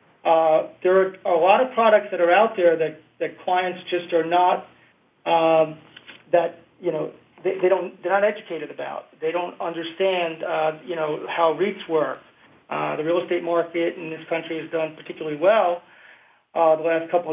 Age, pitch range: 40-59, 160-180 Hz